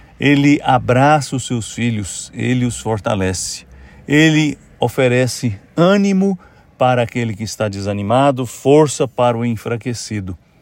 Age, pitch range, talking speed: 60-79, 105-135 Hz, 115 wpm